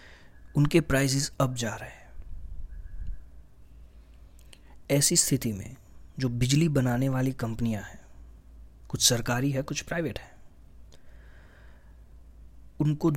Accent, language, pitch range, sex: Indian, English, 105-145 Hz, male